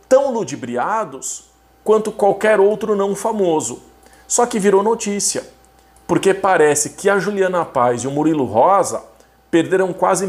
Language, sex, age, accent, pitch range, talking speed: Portuguese, male, 40-59, Brazilian, 135-190 Hz, 135 wpm